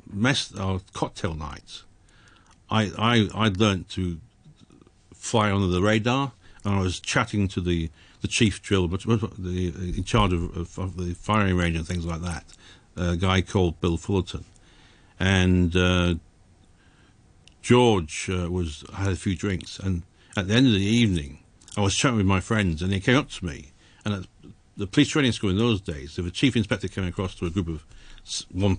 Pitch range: 90-110 Hz